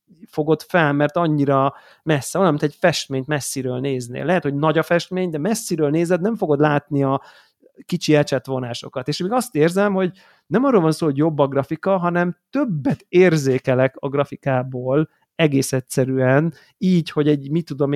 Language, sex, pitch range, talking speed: Hungarian, male, 135-165 Hz, 165 wpm